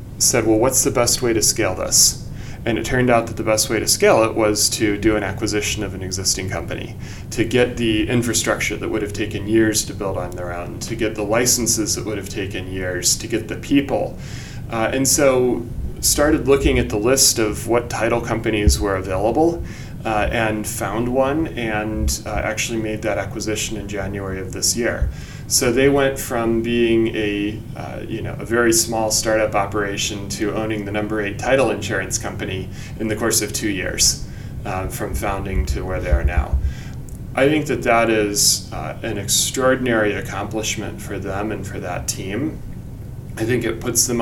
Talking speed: 190 wpm